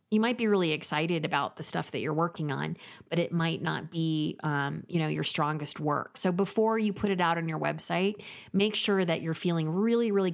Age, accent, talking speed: 30-49, American, 225 wpm